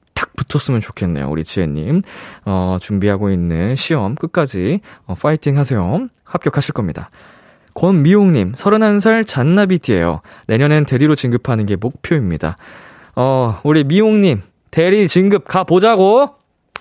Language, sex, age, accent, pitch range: Korean, male, 20-39, native, 110-175 Hz